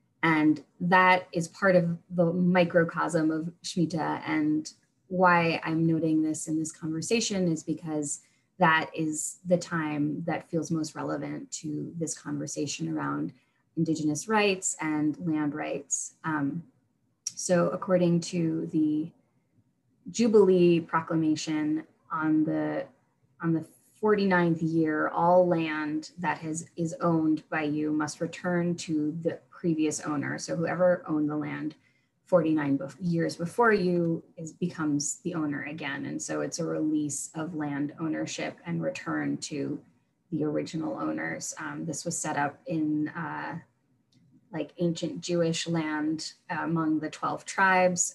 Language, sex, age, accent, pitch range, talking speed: English, female, 20-39, American, 150-170 Hz, 135 wpm